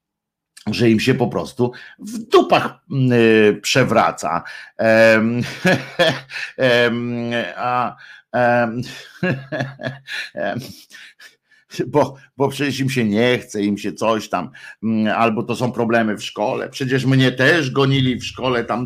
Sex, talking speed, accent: male, 100 wpm, native